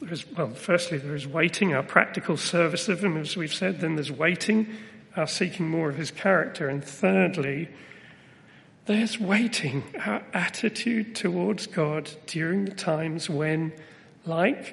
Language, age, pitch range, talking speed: English, 40-59, 155-190 Hz, 145 wpm